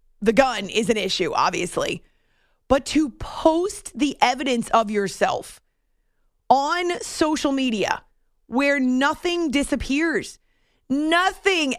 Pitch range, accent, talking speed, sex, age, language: 235-320 Hz, American, 100 wpm, female, 30-49, English